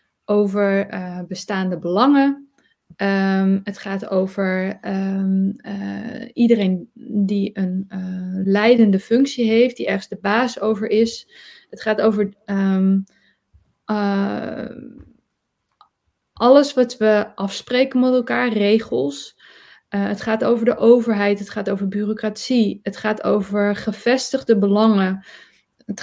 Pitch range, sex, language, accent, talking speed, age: 200-235 Hz, female, Dutch, Dutch, 110 wpm, 20-39